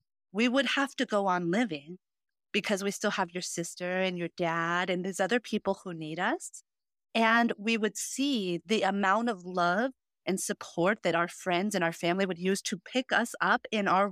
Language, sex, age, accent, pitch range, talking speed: English, female, 30-49, American, 175-245 Hz, 200 wpm